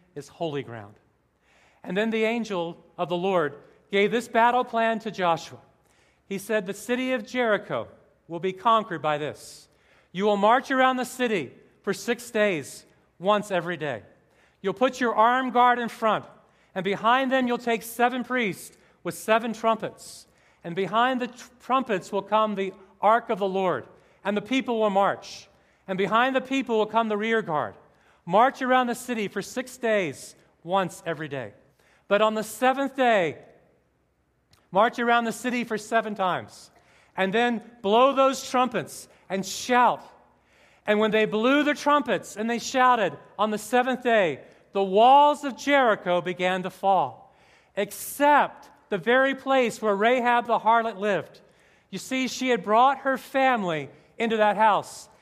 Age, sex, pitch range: 40-59, male, 190-245 Hz